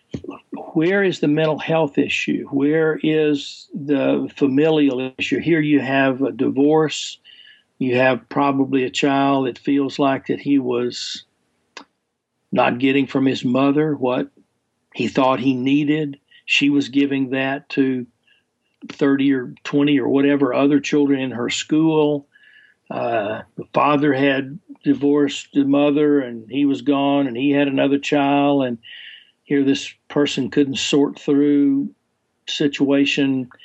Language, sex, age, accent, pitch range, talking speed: English, male, 60-79, American, 135-150 Hz, 135 wpm